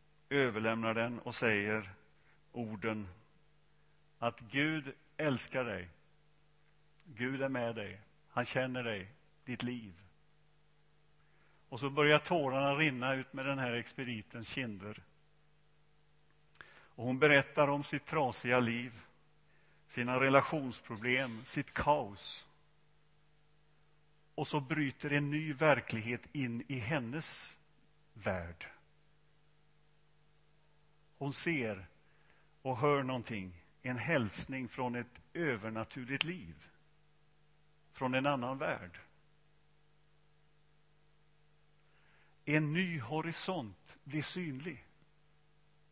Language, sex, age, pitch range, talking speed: Swedish, male, 50-69, 125-150 Hz, 90 wpm